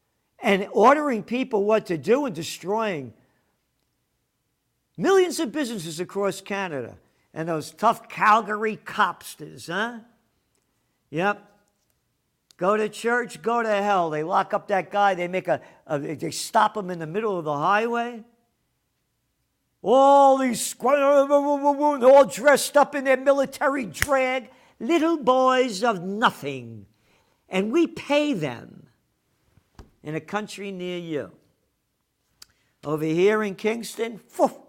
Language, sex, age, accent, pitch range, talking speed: English, male, 50-69, American, 155-235 Hz, 125 wpm